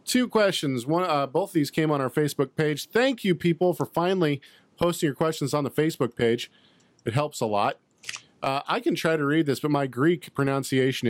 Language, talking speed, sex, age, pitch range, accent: English, 210 wpm, male, 40-59, 125-160 Hz, American